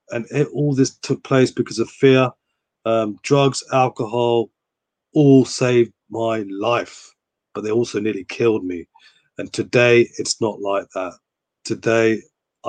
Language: English